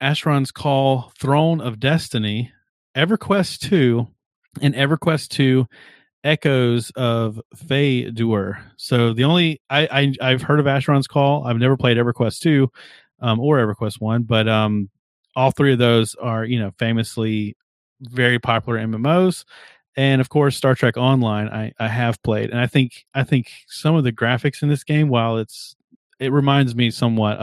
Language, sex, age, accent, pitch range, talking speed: English, male, 30-49, American, 115-140 Hz, 160 wpm